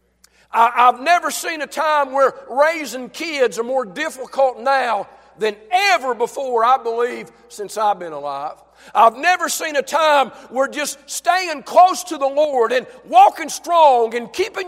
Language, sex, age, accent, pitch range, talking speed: English, male, 50-69, American, 250-350 Hz, 155 wpm